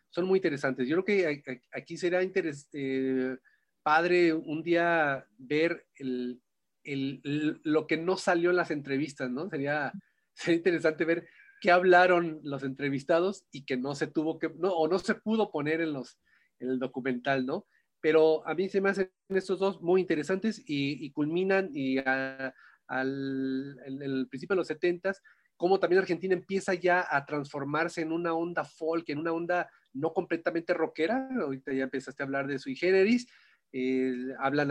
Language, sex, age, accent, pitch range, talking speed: Italian, male, 30-49, Mexican, 135-180 Hz, 170 wpm